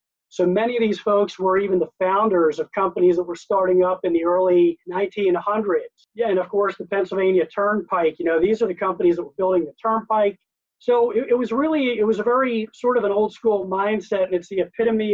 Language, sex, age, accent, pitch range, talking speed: English, male, 40-59, American, 185-225 Hz, 220 wpm